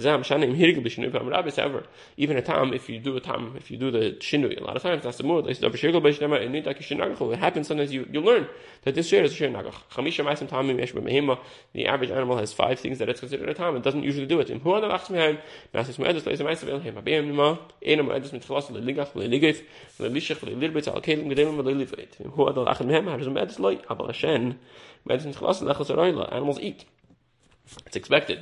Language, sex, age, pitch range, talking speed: English, male, 30-49, 125-155 Hz, 110 wpm